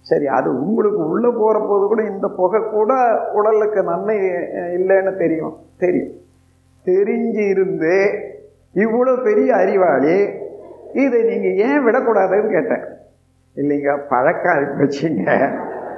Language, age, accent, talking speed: Tamil, 50-69, native, 100 wpm